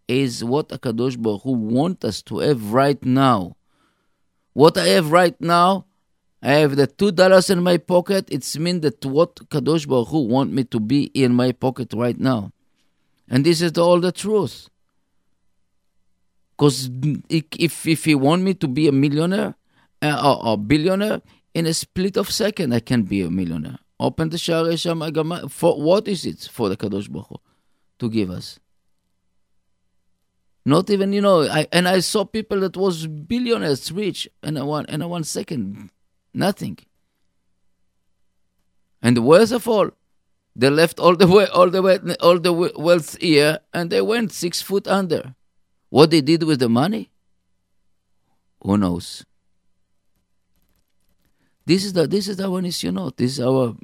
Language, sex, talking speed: English, male, 165 wpm